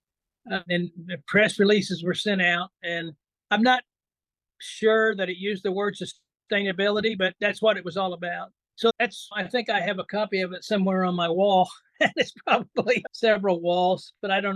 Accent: American